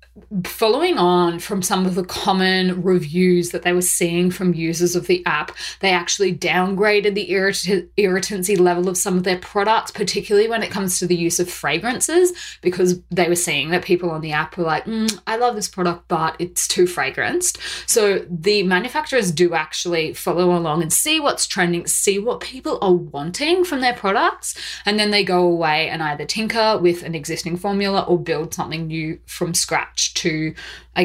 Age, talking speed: 20-39, 185 wpm